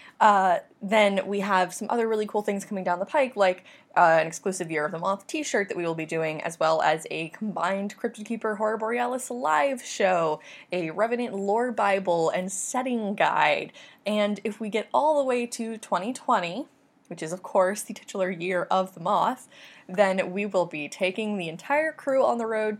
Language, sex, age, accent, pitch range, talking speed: English, female, 20-39, American, 185-240 Hz, 195 wpm